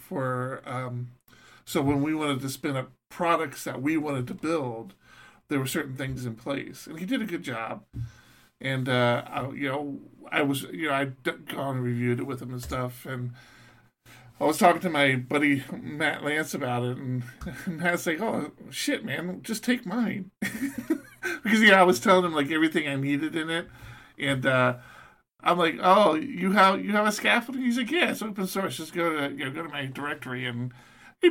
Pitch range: 135-190 Hz